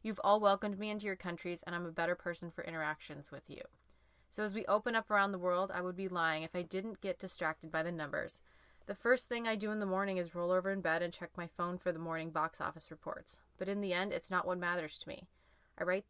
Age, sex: 20-39, female